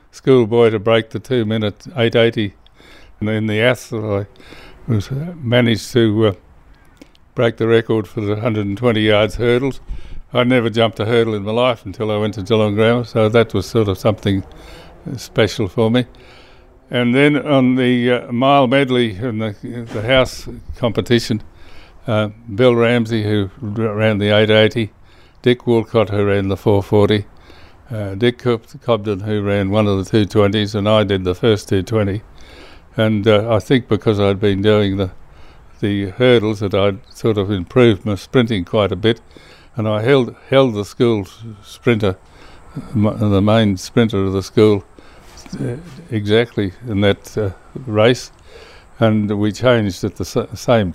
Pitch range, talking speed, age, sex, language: 100-120 Hz, 160 wpm, 60-79, male, English